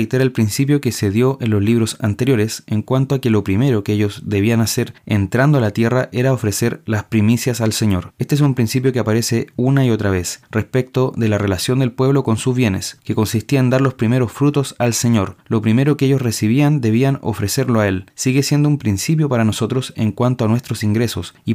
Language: Spanish